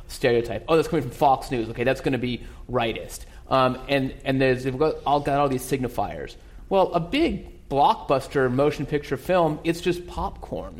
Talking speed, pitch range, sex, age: 190 wpm, 120-155 Hz, male, 30-49